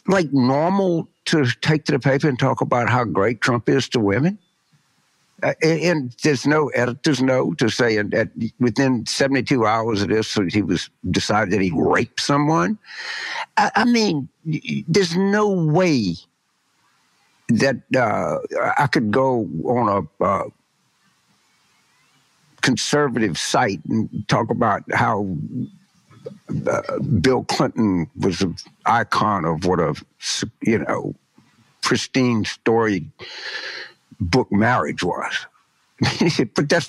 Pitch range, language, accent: 110-160 Hz, English, American